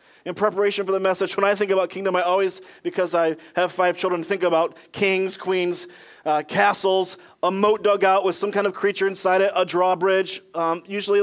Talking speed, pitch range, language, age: 200 wpm, 175-210 Hz, English, 30-49